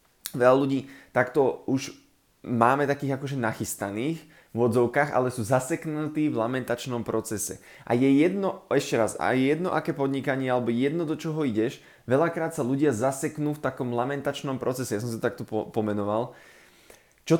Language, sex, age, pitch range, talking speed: Slovak, male, 20-39, 120-145 Hz, 160 wpm